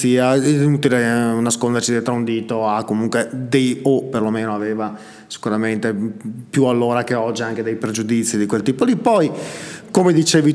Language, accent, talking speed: Italian, native, 165 wpm